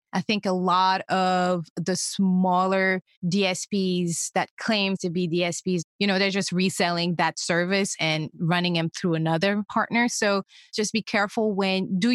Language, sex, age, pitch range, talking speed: English, female, 20-39, 180-210 Hz, 160 wpm